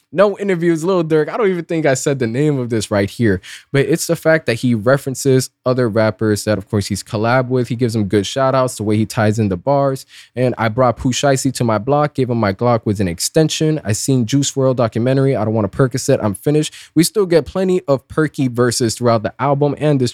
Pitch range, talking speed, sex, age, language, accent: 110-145 Hz, 245 wpm, male, 20-39, English, American